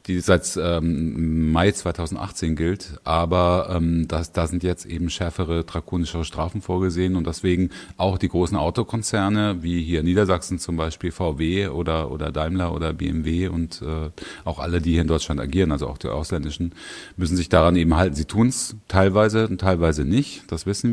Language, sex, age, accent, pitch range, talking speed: German, male, 30-49, German, 85-100 Hz, 175 wpm